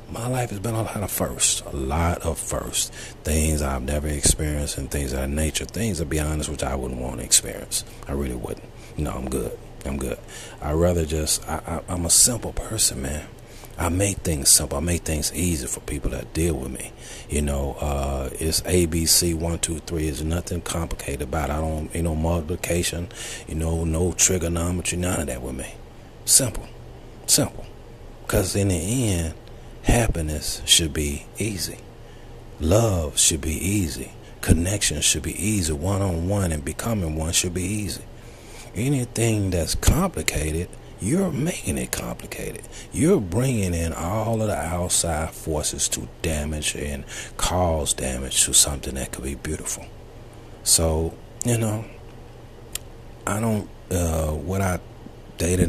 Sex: male